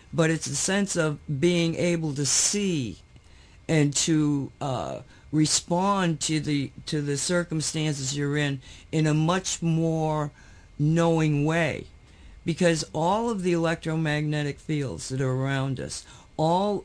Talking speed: 130 wpm